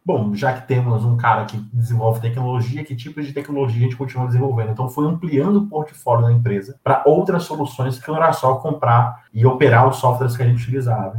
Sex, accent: male, Brazilian